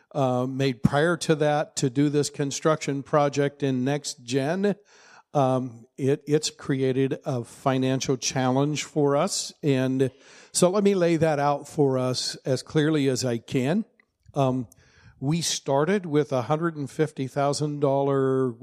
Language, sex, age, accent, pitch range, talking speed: English, male, 50-69, American, 130-155 Hz, 135 wpm